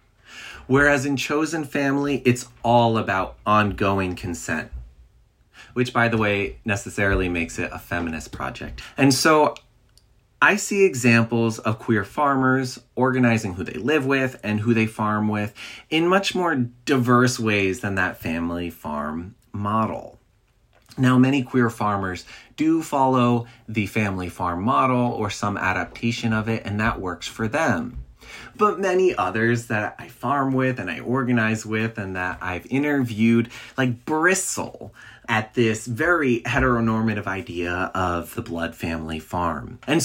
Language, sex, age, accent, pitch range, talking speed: English, male, 30-49, American, 95-130 Hz, 140 wpm